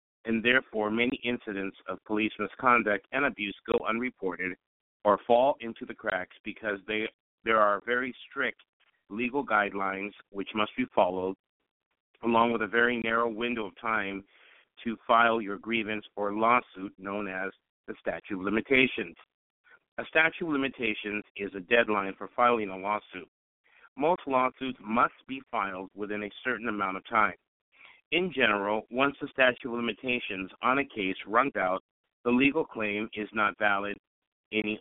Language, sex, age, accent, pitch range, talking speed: English, male, 50-69, American, 105-125 Hz, 150 wpm